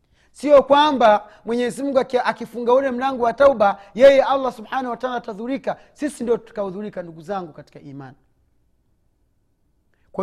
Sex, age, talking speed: male, 40-59, 135 wpm